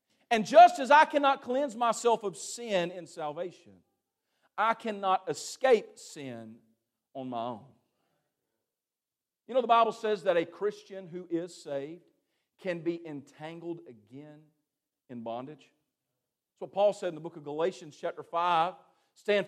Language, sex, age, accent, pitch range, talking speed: English, male, 50-69, American, 155-220 Hz, 145 wpm